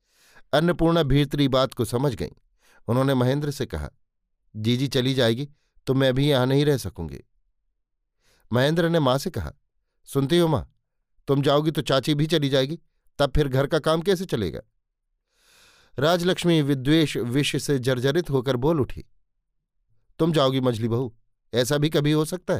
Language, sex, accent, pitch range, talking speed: Hindi, male, native, 115-145 Hz, 160 wpm